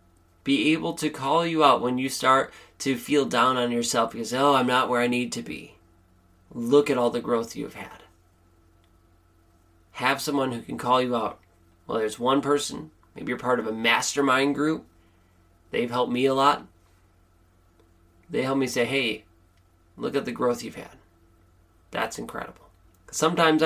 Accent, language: American, English